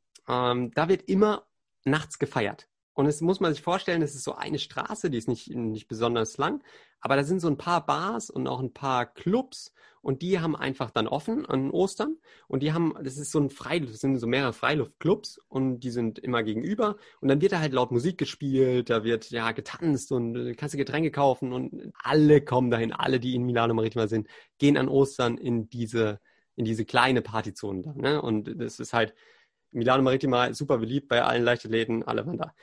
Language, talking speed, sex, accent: German, 210 wpm, male, German